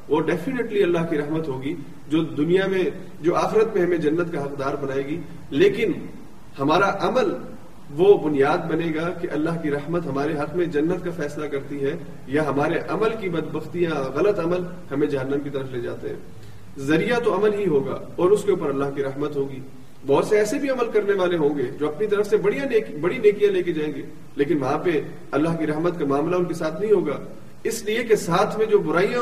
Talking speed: 215 wpm